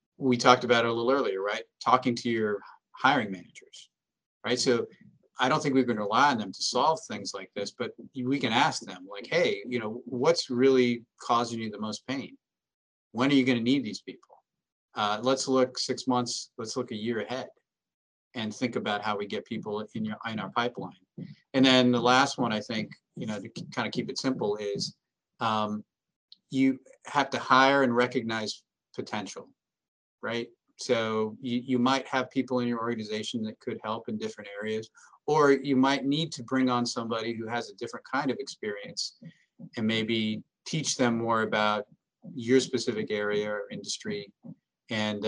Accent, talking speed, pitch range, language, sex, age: American, 185 wpm, 110-130 Hz, English, male, 40-59